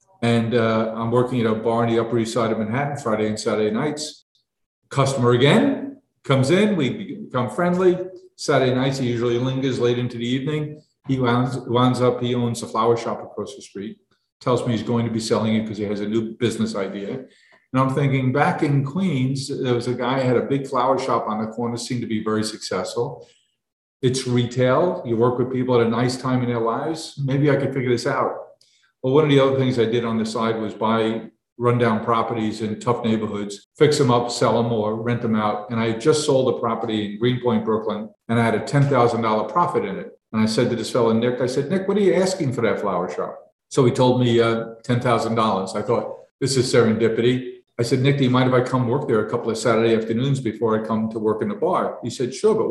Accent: American